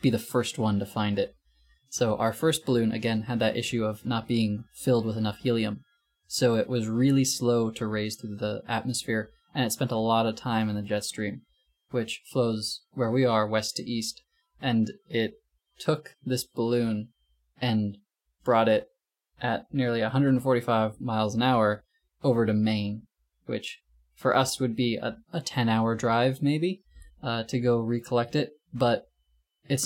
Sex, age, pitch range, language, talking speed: male, 20-39, 110-130 Hz, English, 170 wpm